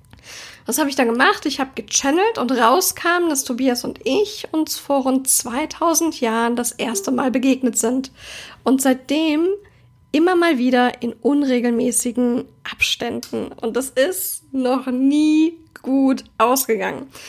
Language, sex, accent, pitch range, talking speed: German, female, German, 240-290 Hz, 135 wpm